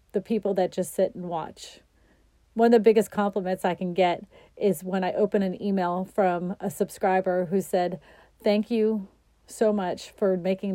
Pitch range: 180-205 Hz